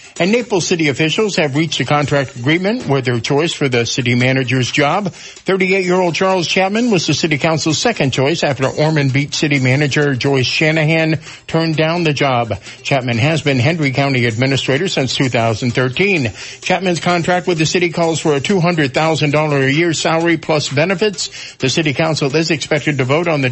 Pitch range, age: 135-175 Hz, 50-69